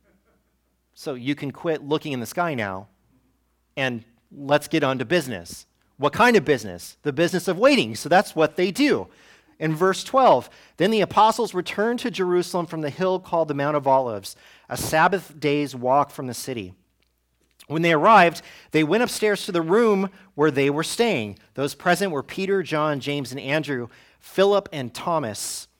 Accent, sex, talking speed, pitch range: American, male, 175 wpm, 120-175 Hz